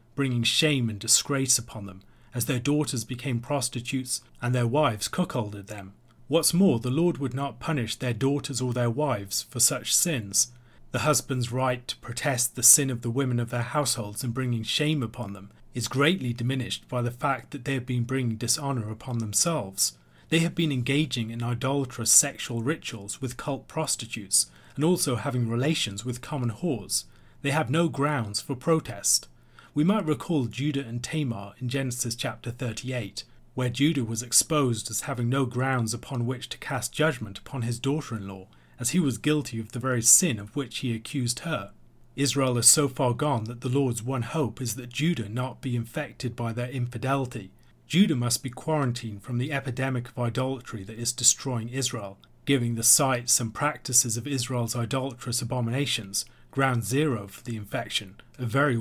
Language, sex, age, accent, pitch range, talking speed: English, male, 30-49, British, 120-140 Hz, 180 wpm